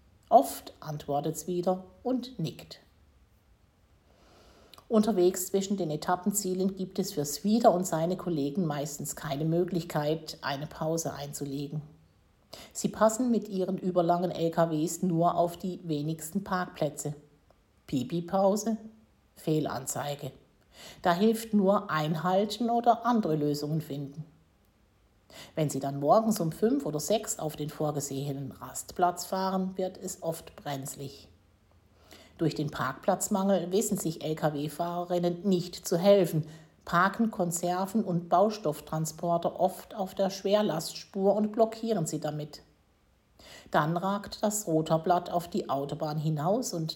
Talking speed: 115 wpm